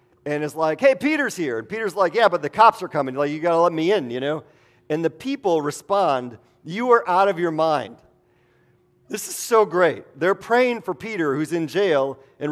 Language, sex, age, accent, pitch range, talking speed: English, male, 40-59, American, 130-195 Hz, 220 wpm